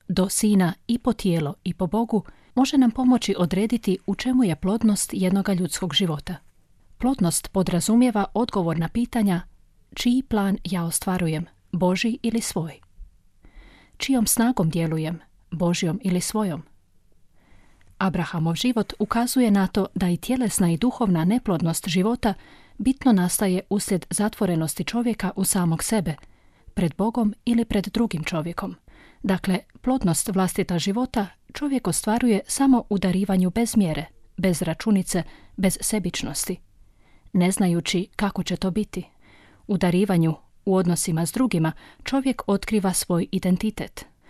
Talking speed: 125 wpm